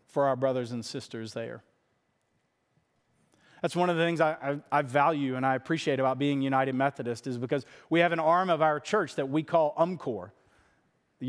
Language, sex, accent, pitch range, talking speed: English, male, American, 140-165 Hz, 185 wpm